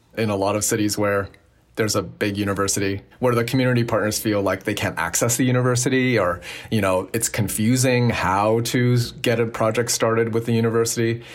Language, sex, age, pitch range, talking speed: English, male, 30-49, 105-125 Hz, 185 wpm